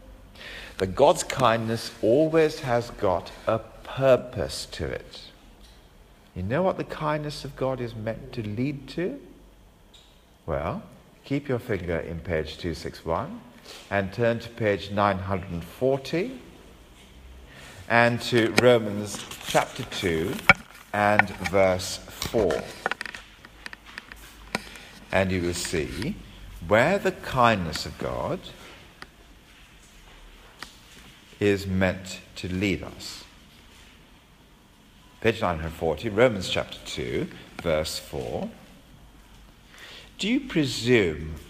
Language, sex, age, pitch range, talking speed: English, male, 50-69, 90-130 Hz, 95 wpm